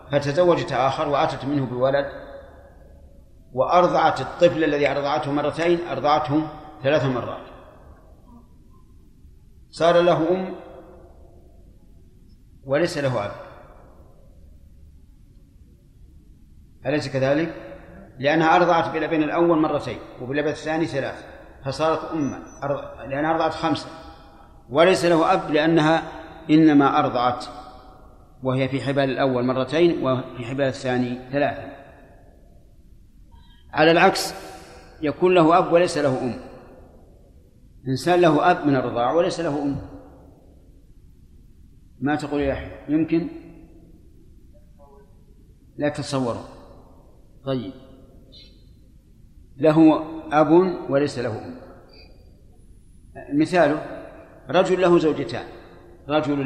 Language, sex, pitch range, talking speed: Arabic, male, 125-160 Hz, 90 wpm